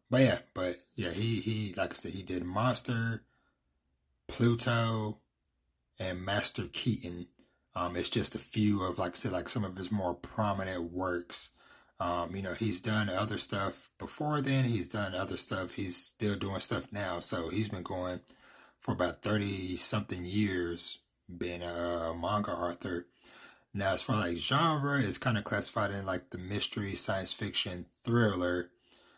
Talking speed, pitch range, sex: 165 wpm, 90-115 Hz, male